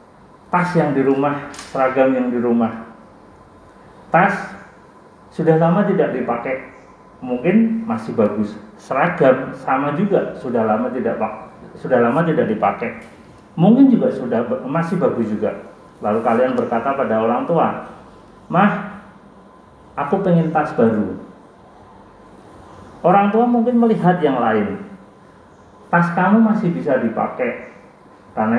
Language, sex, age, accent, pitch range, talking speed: Indonesian, male, 40-59, native, 130-190 Hz, 115 wpm